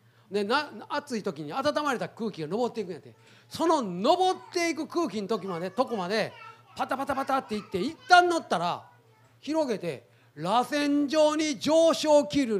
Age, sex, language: 40-59, male, Japanese